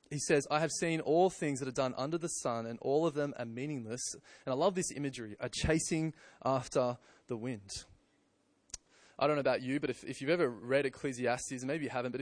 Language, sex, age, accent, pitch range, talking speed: English, male, 20-39, Australian, 130-170 Hz, 225 wpm